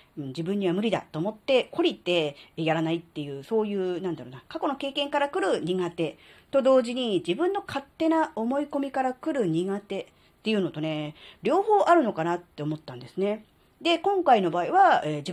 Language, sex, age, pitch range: Japanese, female, 40-59, 160-255 Hz